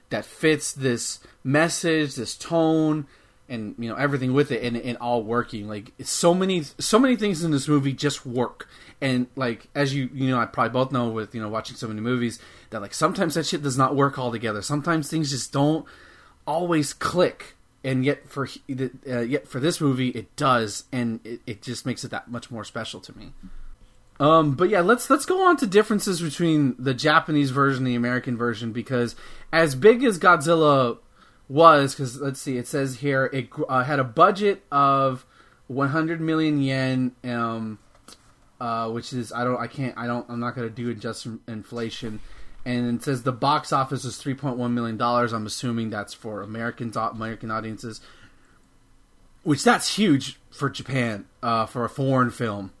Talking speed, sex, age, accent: 190 wpm, male, 30-49, American